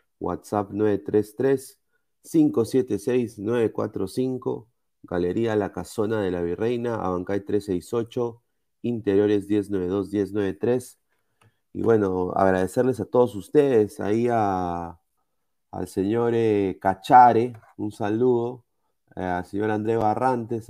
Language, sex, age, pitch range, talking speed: Spanish, male, 30-49, 95-120 Hz, 85 wpm